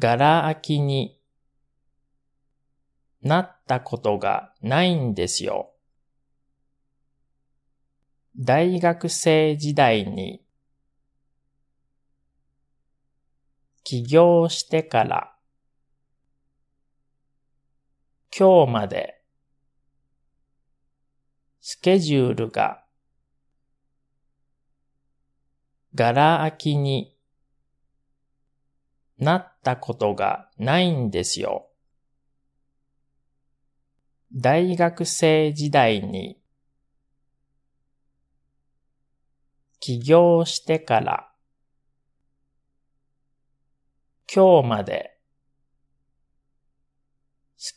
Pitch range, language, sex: 115-140 Hz, Japanese, male